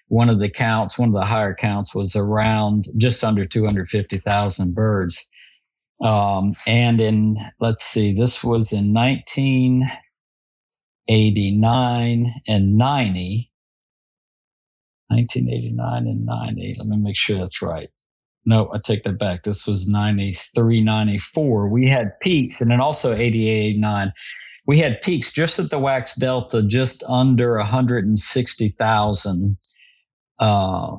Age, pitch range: 50-69, 100-115 Hz